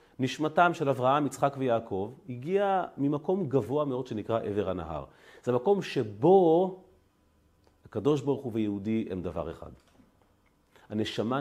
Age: 40-59